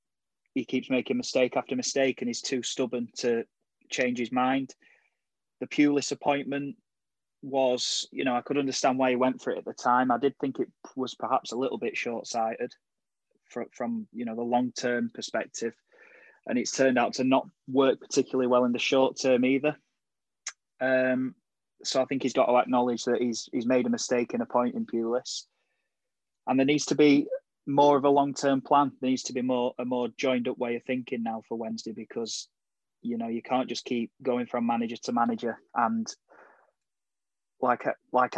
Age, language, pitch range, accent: 20-39, English, 120-130 Hz, British